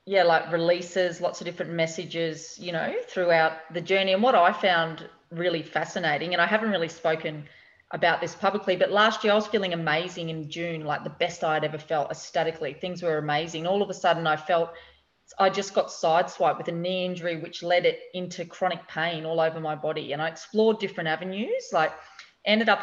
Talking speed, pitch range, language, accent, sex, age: 200 wpm, 165-190 Hz, English, Australian, female, 30-49